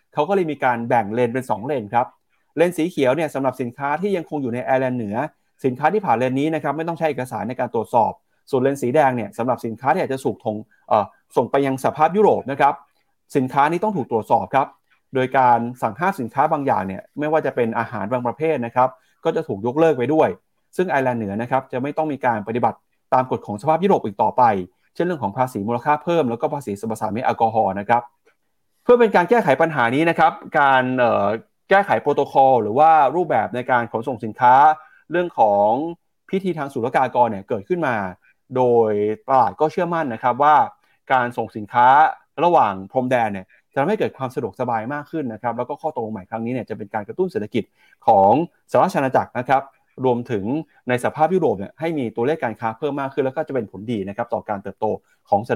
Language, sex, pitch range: Thai, male, 115-155 Hz